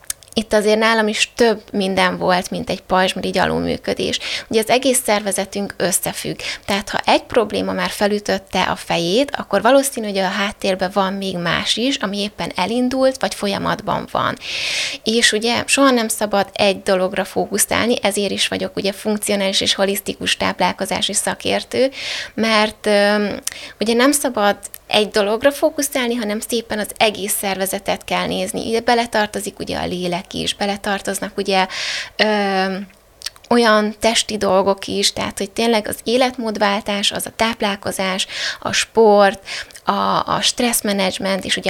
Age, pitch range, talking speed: 20-39, 195-230 Hz, 140 wpm